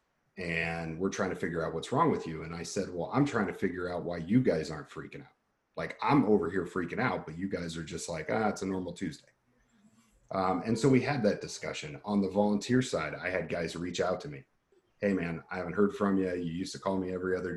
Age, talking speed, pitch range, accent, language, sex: 40-59, 255 wpm, 85-95 Hz, American, English, male